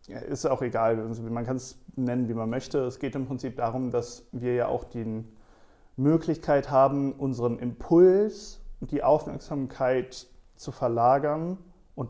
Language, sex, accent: German, male, German